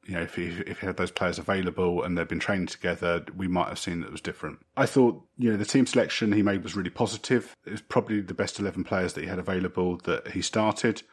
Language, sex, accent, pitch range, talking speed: English, male, British, 90-110 Hz, 270 wpm